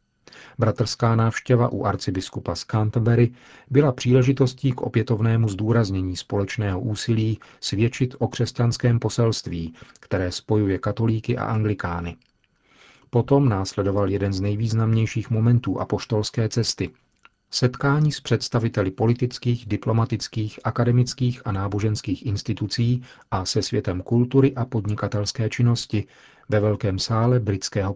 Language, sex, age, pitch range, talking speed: Czech, male, 40-59, 105-125 Hz, 105 wpm